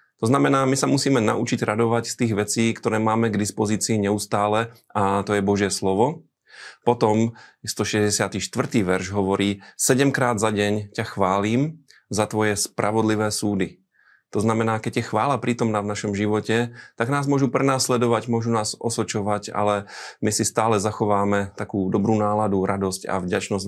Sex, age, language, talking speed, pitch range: male, 30-49, Slovak, 155 wpm, 100-115 Hz